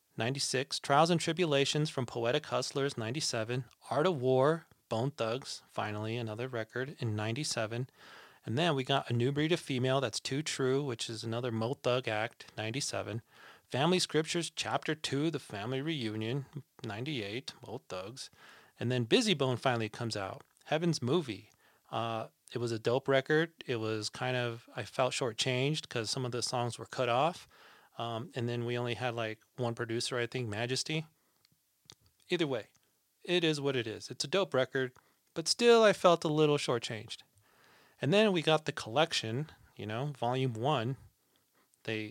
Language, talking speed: English, 170 wpm